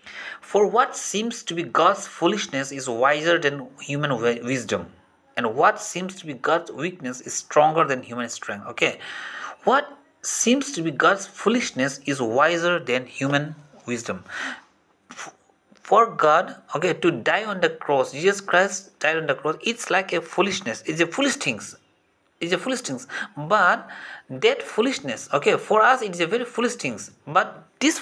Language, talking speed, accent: English, 165 wpm, Indian